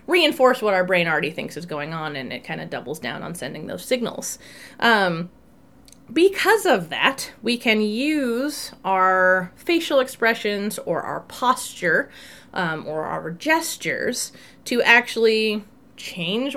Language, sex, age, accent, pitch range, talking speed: English, female, 30-49, American, 190-250 Hz, 140 wpm